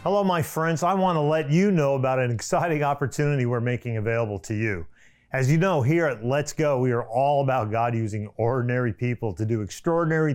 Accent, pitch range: American, 120-165 Hz